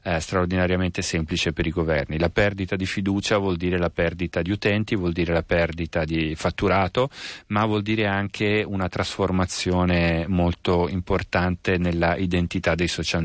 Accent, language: native, Italian